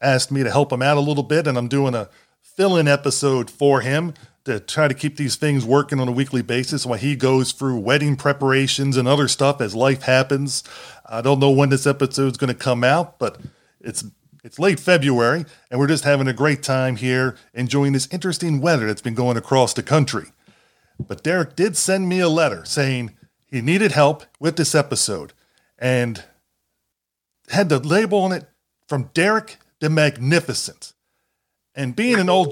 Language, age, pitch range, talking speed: English, 30-49, 135-170 Hz, 185 wpm